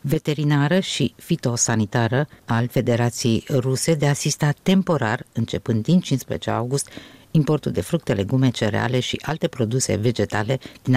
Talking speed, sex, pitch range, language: 125 wpm, female, 115-145 Hz, Romanian